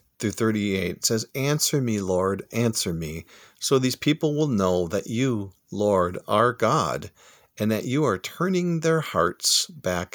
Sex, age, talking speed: male, 50-69, 160 wpm